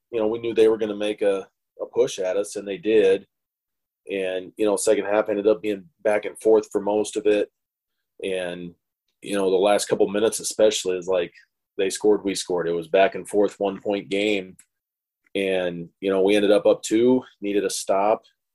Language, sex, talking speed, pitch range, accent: English, male, 205 wpm, 95-105 Hz, American